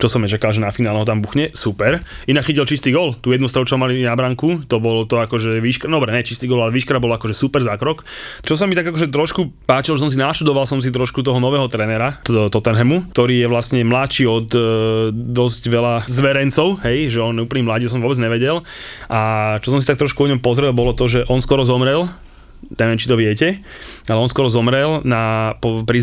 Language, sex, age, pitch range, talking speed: Slovak, male, 20-39, 115-140 Hz, 220 wpm